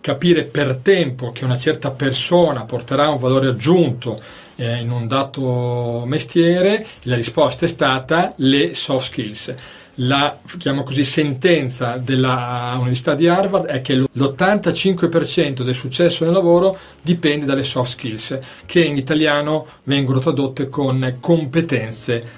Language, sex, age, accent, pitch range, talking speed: Italian, male, 40-59, native, 130-170 Hz, 125 wpm